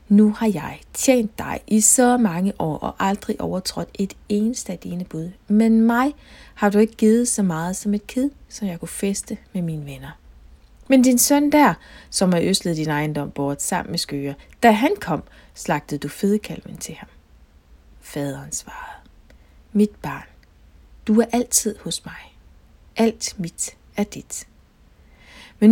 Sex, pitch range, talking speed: female, 155-220 Hz, 165 wpm